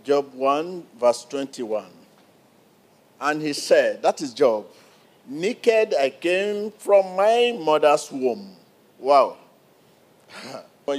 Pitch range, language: 145-195 Hz, English